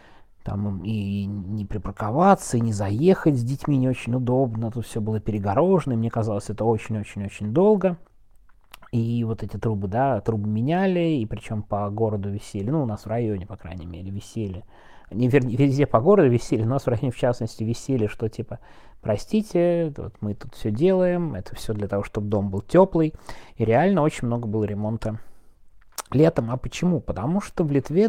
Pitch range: 105-155 Hz